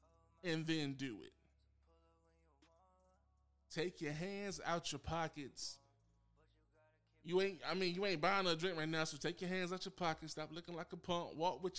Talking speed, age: 175 wpm, 20-39